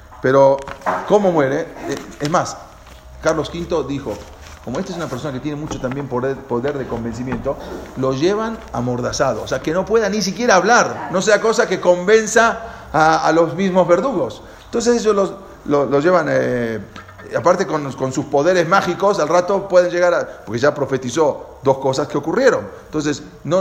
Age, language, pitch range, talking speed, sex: 40-59, English, 120-175 Hz, 175 wpm, male